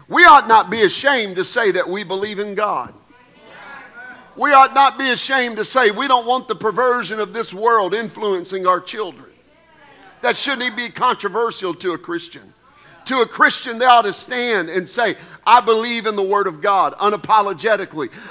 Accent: American